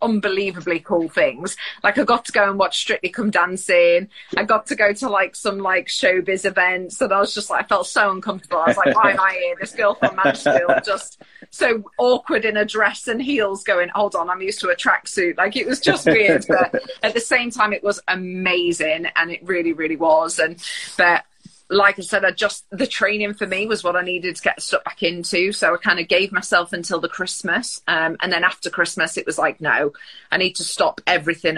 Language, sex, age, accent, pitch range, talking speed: English, female, 30-49, British, 175-210 Hz, 230 wpm